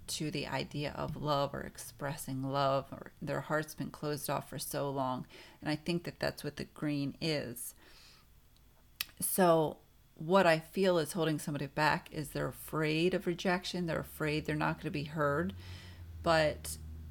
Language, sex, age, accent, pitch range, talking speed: English, female, 40-59, American, 125-165 Hz, 165 wpm